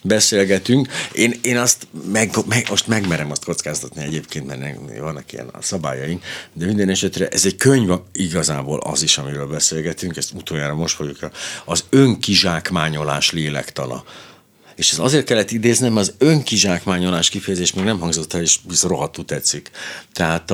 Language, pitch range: Hungarian, 80-110 Hz